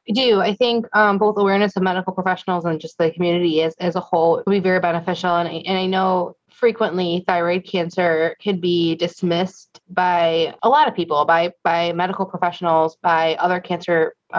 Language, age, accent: English, 20-39, American